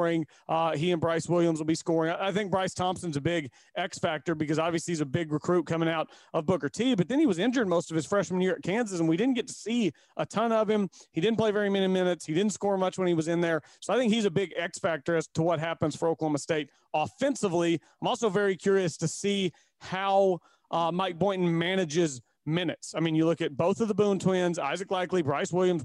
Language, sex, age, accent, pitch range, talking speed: English, male, 40-59, American, 165-200 Hz, 245 wpm